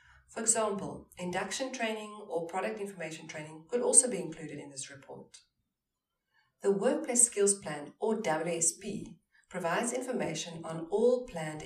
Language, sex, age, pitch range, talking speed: English, female, 40-59, 155-205 Hz, 135 wpm